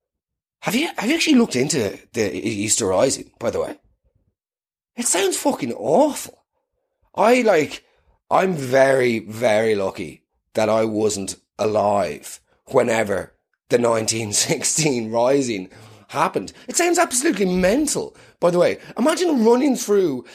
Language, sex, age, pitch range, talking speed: English, male, 30-49, 150-240 Hz, 125 wpm